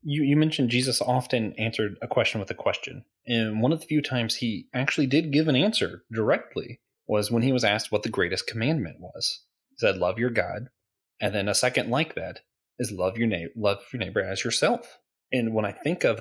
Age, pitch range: 30-49, 110-135 Hz